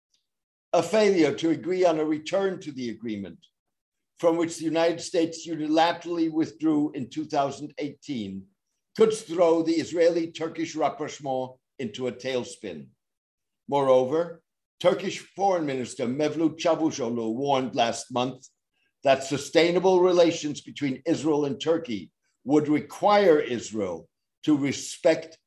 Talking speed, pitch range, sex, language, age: 115 wpm, 130-175 Hz, male, English, 60-79